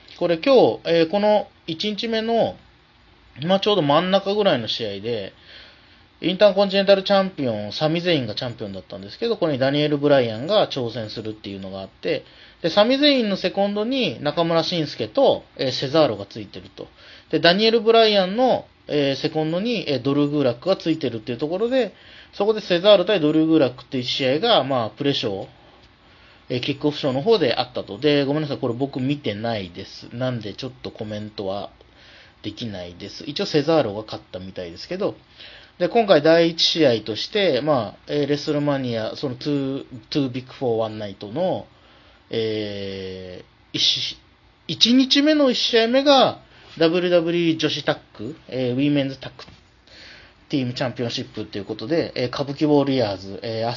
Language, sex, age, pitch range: Japanese, male, 30-49, 115-170 Hz